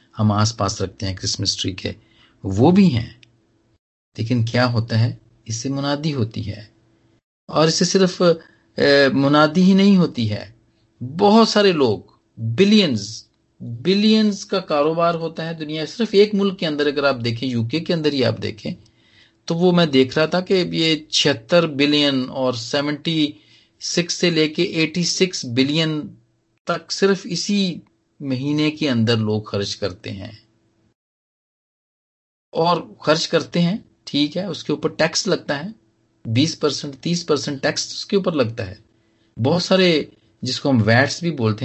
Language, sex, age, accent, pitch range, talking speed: Hindi, male, 40-59, native, 110-170 Hz, 145 wpm